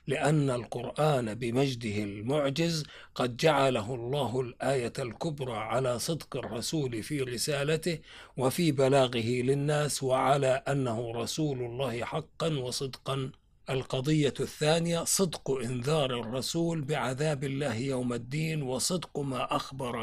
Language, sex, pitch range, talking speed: Arabic, male, 125-150 Hz, 105 wpm